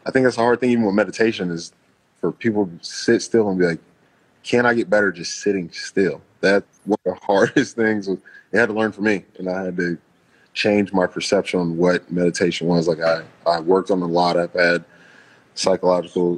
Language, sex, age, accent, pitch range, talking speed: English, male, 20-39, American, 85-95 Hz, 215 wpm